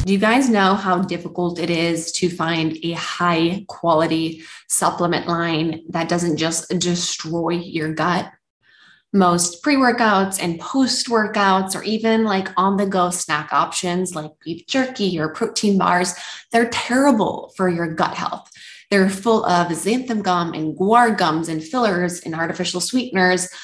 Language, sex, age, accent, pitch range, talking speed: English, female, 20-39, American, 170-200 Hz, 140 wpm